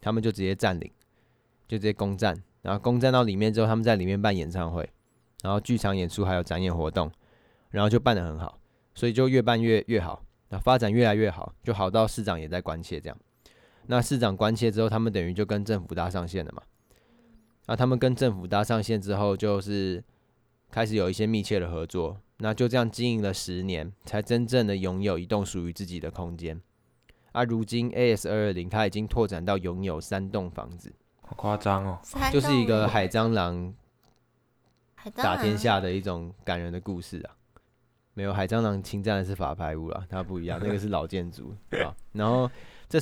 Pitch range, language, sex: 95-115 Hz, Chinese, male